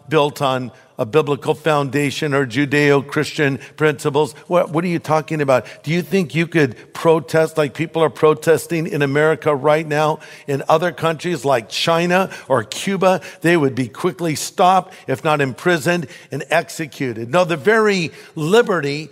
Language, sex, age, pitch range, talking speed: English, male, 50-69, 155-195 Hz, 150 wpm